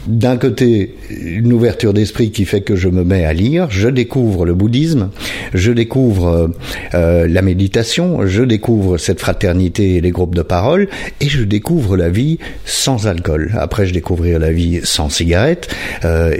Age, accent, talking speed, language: 50-69, French, 170 wpm, French